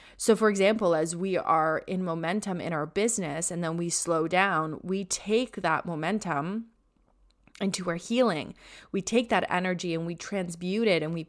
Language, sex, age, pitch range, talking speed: English, female, 20-39, 170-195 Hz, 175 wpm